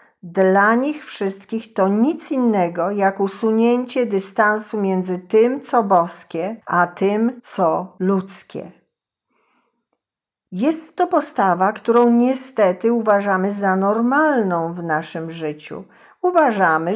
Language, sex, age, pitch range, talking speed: Polish, female, 50-69, 175-225 Hz, 105 wpm